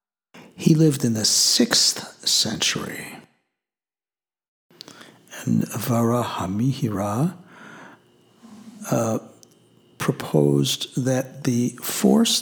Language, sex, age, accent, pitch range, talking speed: English, male, 60-79, American, 115-145 Hz, 65 wpm